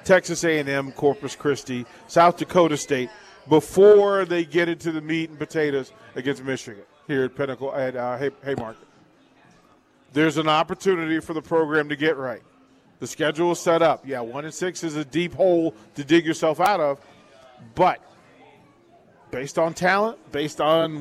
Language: English